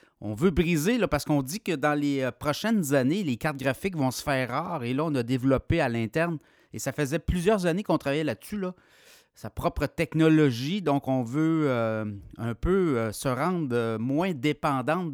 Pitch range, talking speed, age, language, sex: 125-160 Hz, 200 wpm, 30-49, French, male